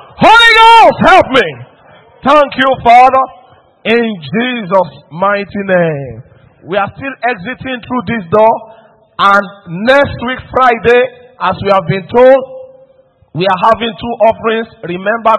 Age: 50-69